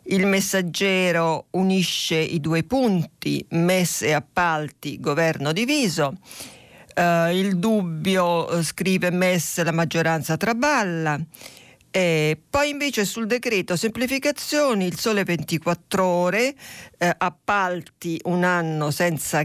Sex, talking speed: female, 110 wpm